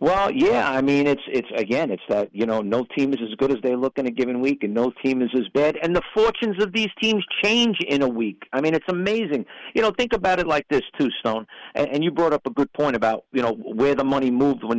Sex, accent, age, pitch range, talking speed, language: male, American, 50-69, 120-160 Hz, 275 wpm, English